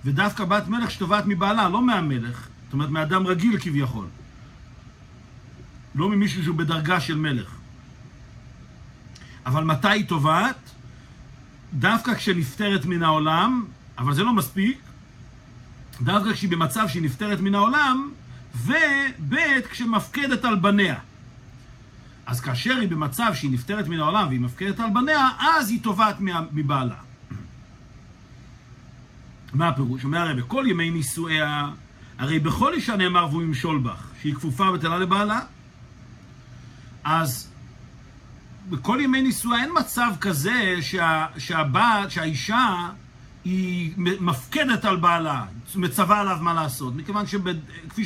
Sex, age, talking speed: male, 50-69, 115 wpm